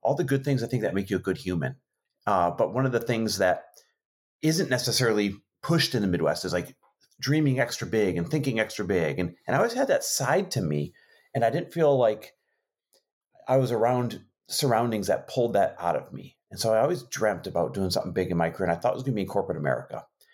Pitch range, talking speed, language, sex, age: 95-135 Hz, 240 wpm, English, male, 30-49